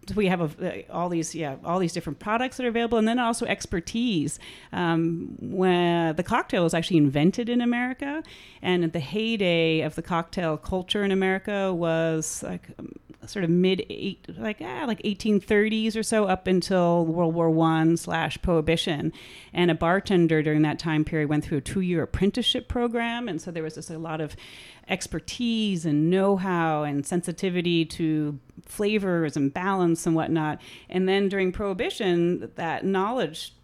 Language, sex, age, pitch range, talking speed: English, female, 30-49, 155-190 Hz, 165 wpm